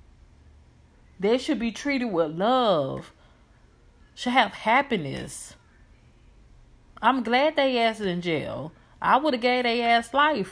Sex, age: female, 30-49